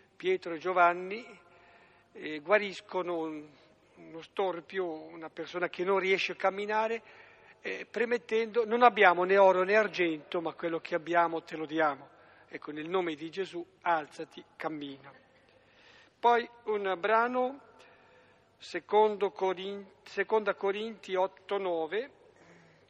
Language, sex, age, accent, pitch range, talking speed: Italian, male, 50-69, native, 165-195 Hz, 110 wpm